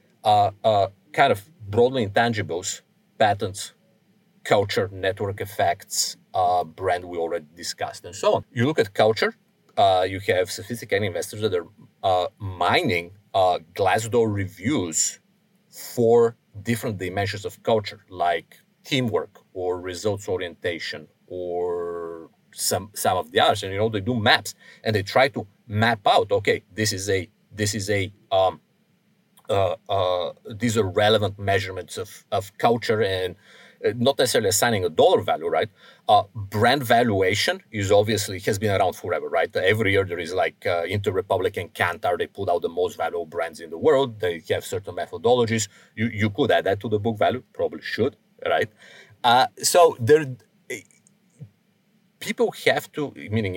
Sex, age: male, 40-59